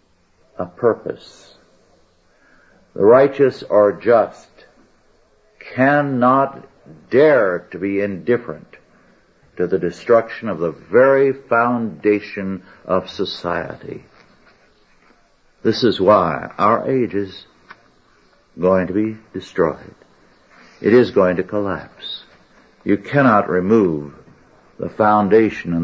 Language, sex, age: English, male, 60-79